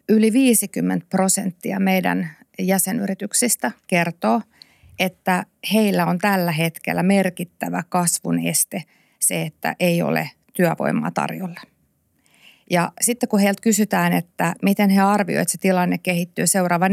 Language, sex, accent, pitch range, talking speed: Finnish, female, native, 175-200 Hz, 120 wpm